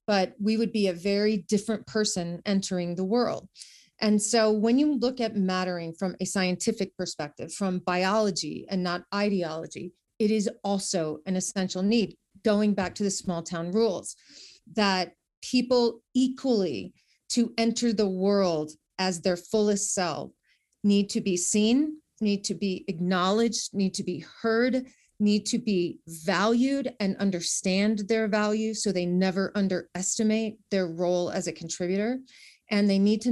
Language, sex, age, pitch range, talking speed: English, female, 40-59, 185-220 Hz, 150 wpm